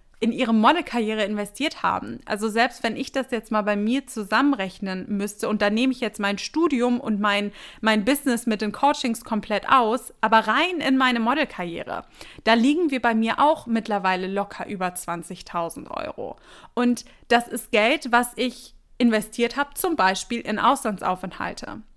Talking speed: 165 wpm